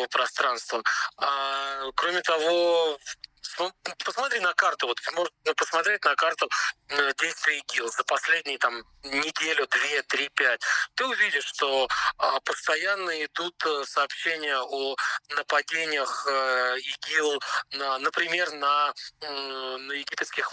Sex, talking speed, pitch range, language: male, 95 wpm, 140-175 Hz, Ukrainian